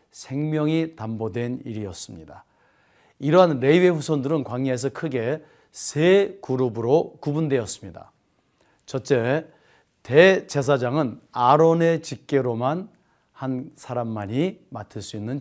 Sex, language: male, Korean